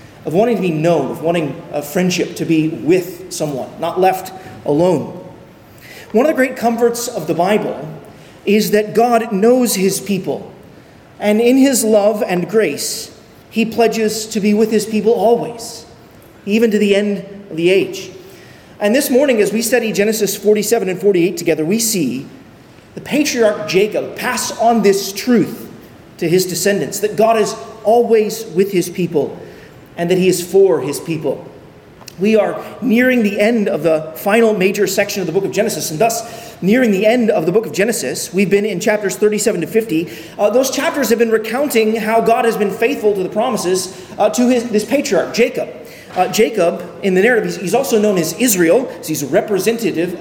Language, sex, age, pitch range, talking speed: English, male, 30-49, 185-225 Hz, 185 wpm